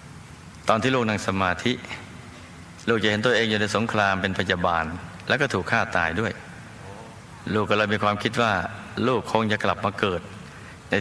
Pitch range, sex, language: 95-110 Hz, male, Thai